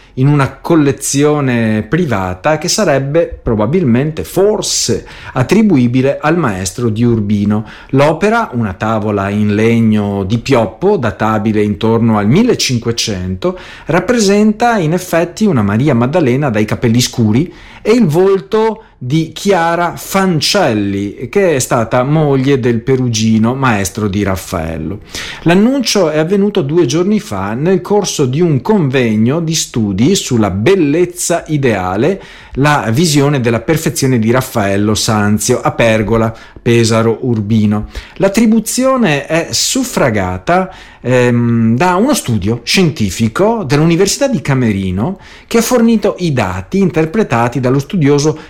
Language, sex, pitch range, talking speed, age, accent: Italian, male, 110-175 Hz, 115 wpm, 40-59, native